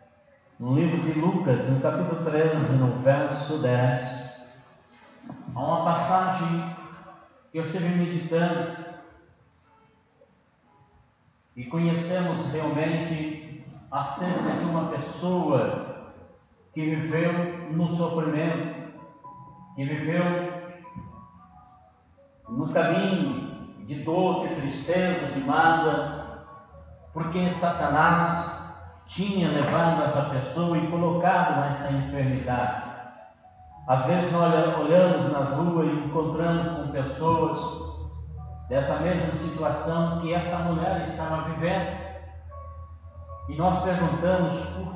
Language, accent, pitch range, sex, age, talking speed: Portuguese, Brazilian, 130-170 Hz, male, 50-69, 95 wpm